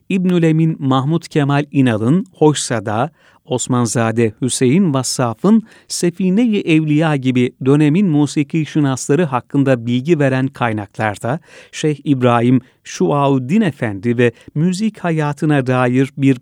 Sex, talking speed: male, 100 wpm